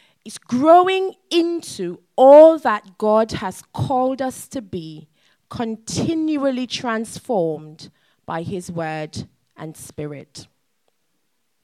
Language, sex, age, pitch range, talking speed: English, female, 20-39, 160-240 Hz, 95 wpm